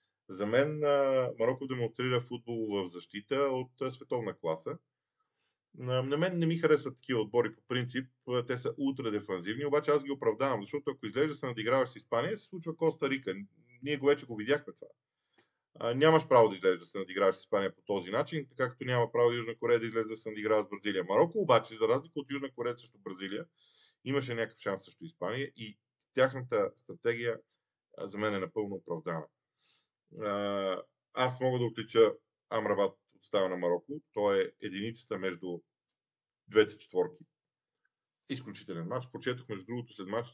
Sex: male